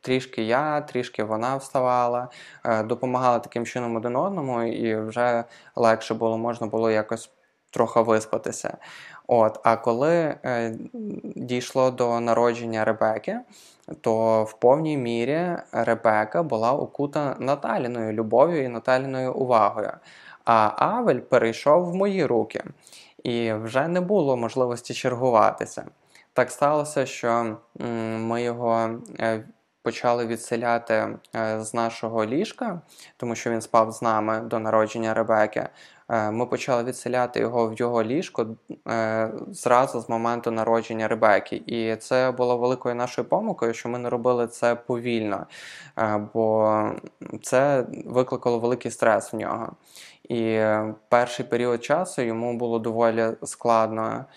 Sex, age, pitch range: male, 20-39, 115-125 Hz